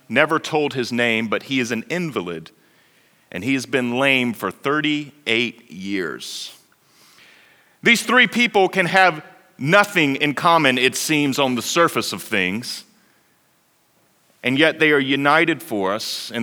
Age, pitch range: 40-59, 120-160 Hz